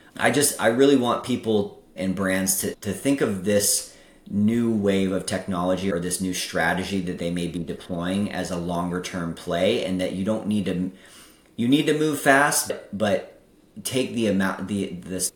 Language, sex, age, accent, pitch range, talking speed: English, male, 30-49, American, 90-105 Hz, 190 wpm